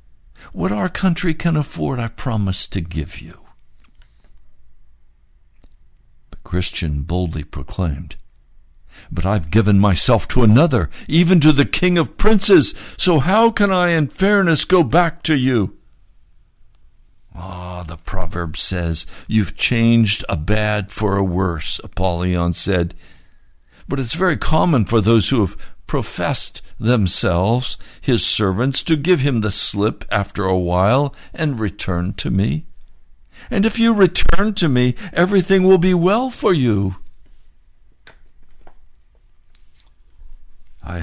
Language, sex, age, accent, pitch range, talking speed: English, male, 60-79, American, 85-135 Hz, 125 wpm